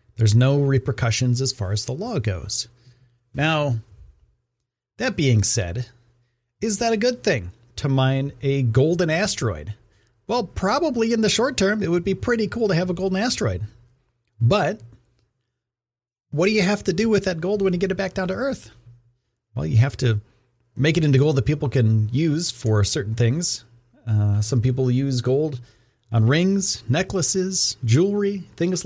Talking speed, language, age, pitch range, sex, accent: 170 wpm, English, 40-59, 115-155 Hz, male, American